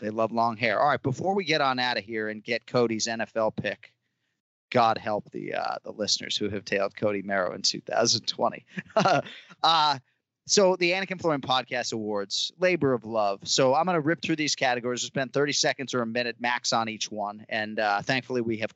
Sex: male